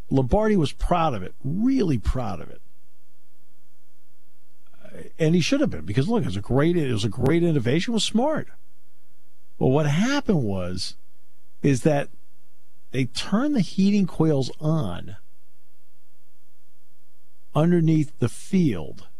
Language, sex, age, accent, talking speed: English, male, 50-69, American, 120 wpm